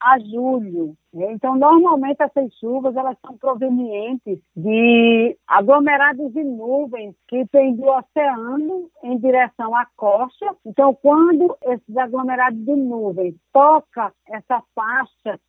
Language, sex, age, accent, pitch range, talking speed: Portuguese, female, 50-69, Brazilian, 230-290 Hz, 115 wpm